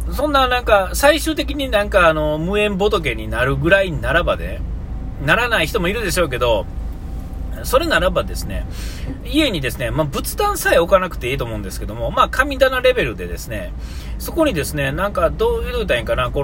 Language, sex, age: Japanese, male, 40-59